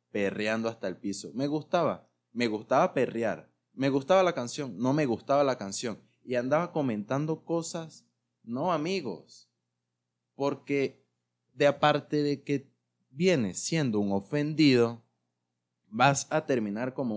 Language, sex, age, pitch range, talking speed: Spanish, male, 20-39, 90-140 Hz, 130 wpm